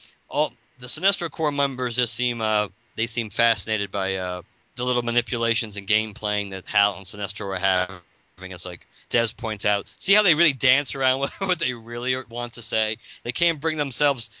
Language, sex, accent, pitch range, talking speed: English, male, American, 100-130 Hz, 190 wpm